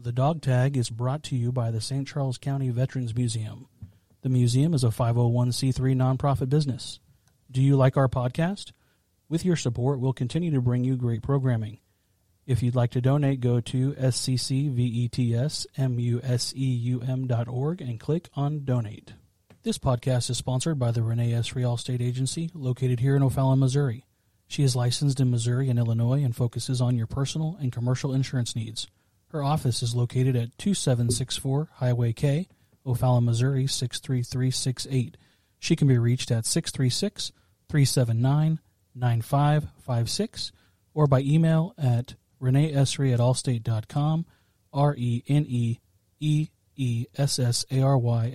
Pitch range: 120-140 Hz